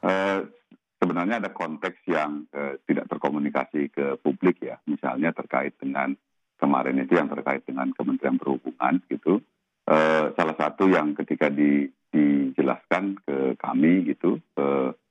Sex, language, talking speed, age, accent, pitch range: male, Indonesian, 130 wpm, 50-69, native, 70-85 Hz